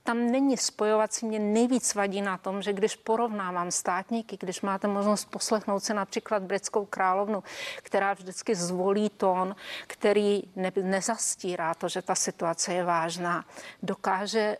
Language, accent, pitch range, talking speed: Czech, native, 190-210 Hz, 135 wpm